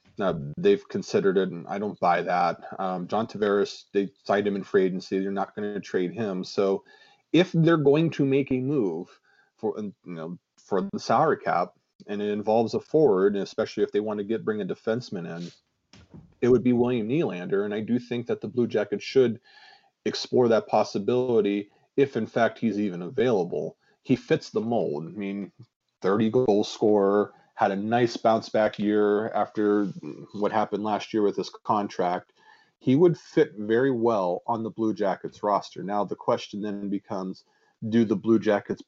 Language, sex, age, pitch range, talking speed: English, male, 30-49, 100-120 Hz, 180 wpm